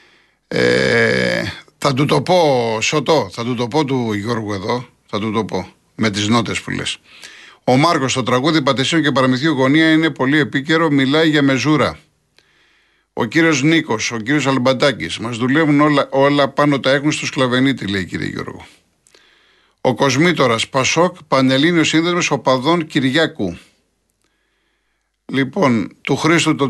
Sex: male